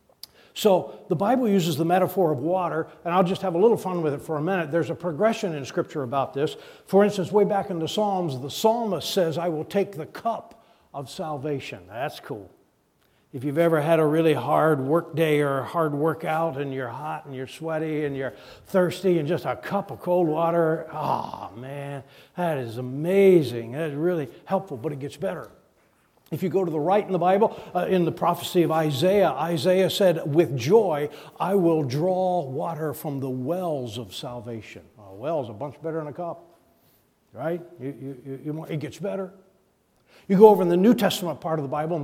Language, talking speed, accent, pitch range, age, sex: English, 205 wpm, American, 145-185 Hz, 60-79, male